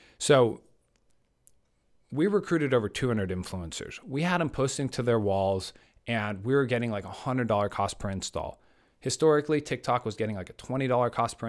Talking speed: 165 wpm